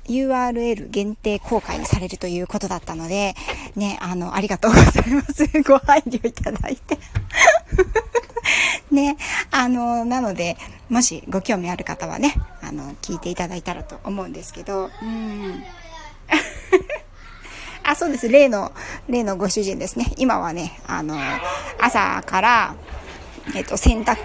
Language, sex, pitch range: Japanese, female, 195-285 Hz